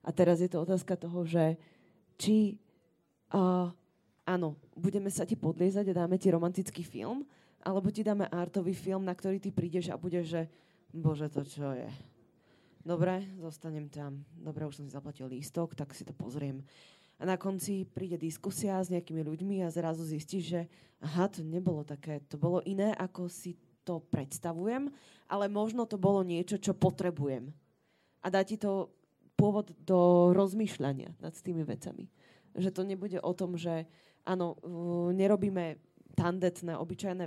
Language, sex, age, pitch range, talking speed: Slovak, female, 20-39, 165-190 Hz, 155 wpm